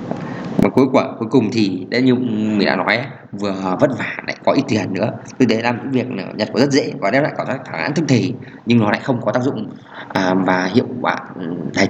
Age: 20-39